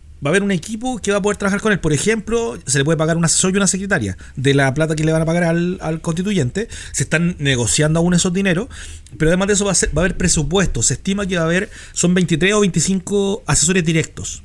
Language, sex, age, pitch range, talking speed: Spanish, male, 30-49, 145-185 Hz, 260 wpm